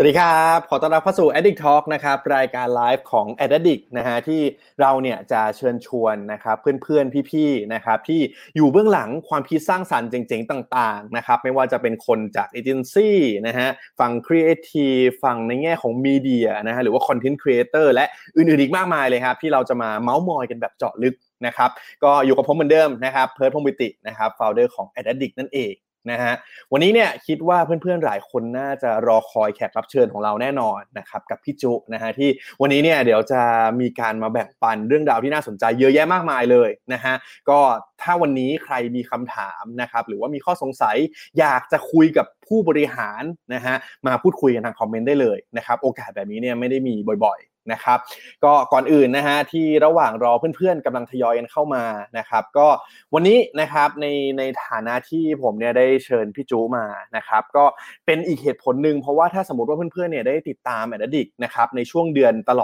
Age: 20-39